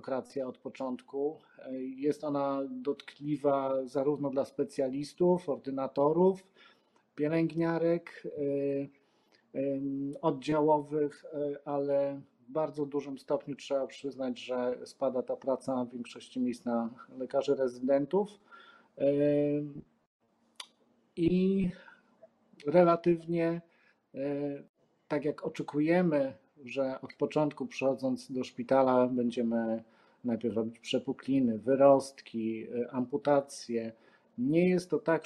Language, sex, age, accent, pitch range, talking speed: Polish, male, 40-59, native, 130-150 Hz, 85 wpm